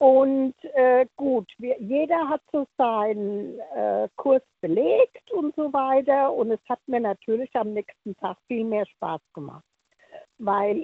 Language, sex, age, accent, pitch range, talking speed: German, female, 60-79, German, 210-300 Hz, 150 wpm